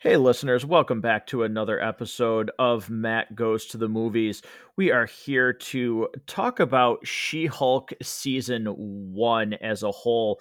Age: 30-49